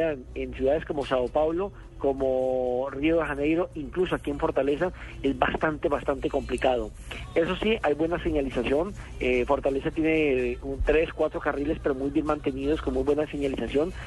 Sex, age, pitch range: male, 40-59, 135-160 Hz